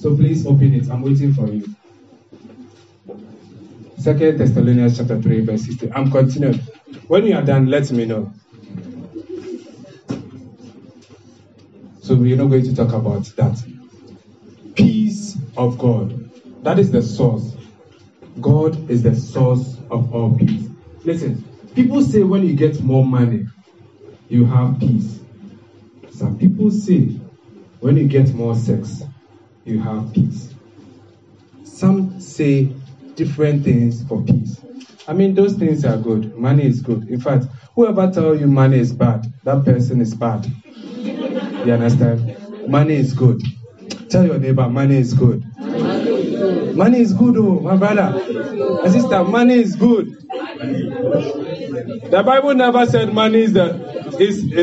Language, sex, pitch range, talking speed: English, male, 120-185 Hz, 135 wpm